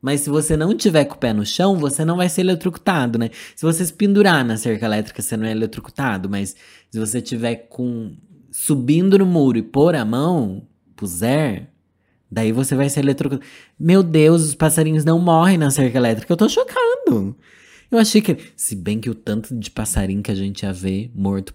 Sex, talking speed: male, 200 wpm